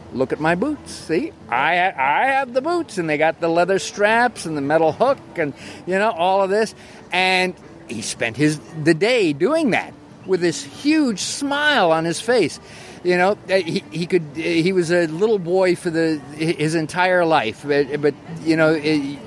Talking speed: 190 wpm